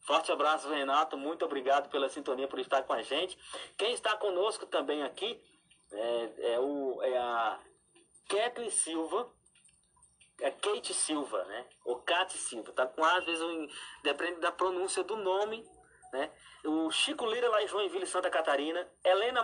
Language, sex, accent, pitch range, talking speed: Portuguese, male, Brazilian, 135-225 Hz, 155 wpm